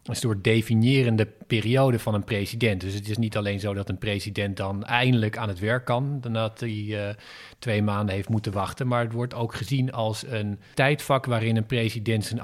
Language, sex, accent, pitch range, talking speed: Dutch, male, Dutch, 110-125 Hz, 205 wpm